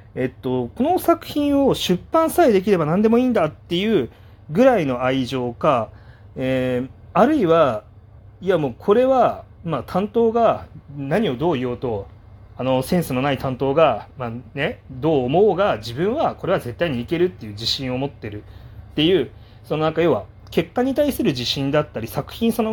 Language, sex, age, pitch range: Japanese, male, 30-49, 115-175 Hz